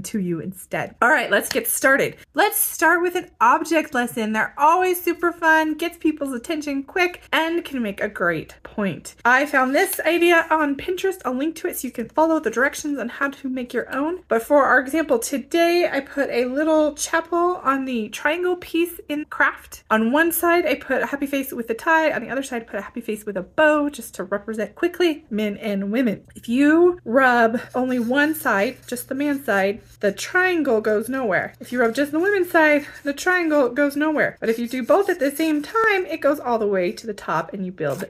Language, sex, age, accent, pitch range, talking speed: English, female, 20-39, American, 235-330 Hz, 220 wpm